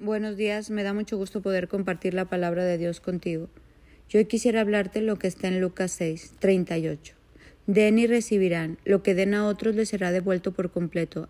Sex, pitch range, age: female, 175-210 Hz, 40-59